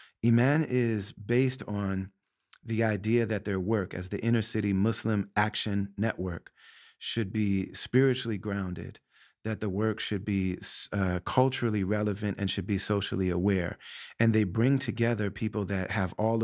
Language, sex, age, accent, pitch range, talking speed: English, male, 30-49, American, 95-115 Hz, 145 wpm